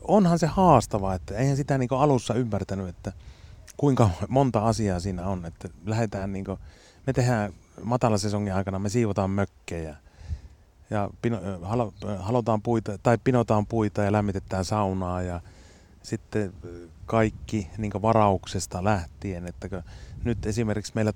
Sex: male